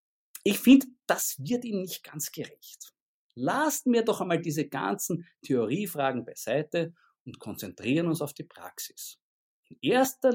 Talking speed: 140 wpm